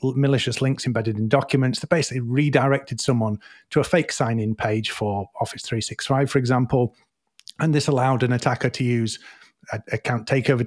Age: 30-49